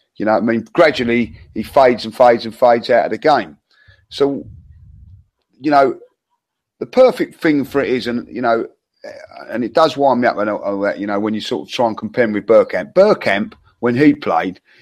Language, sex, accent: English, male, British